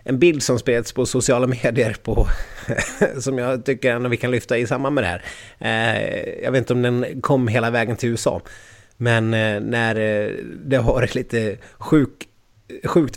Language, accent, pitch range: Swedish, native, 110-125 Hz